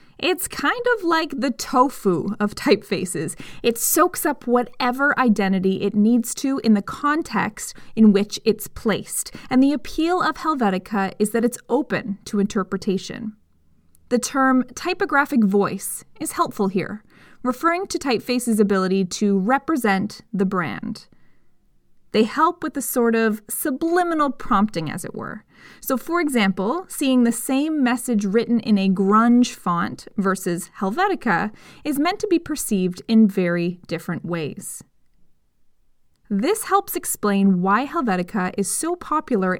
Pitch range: 200-275 Hz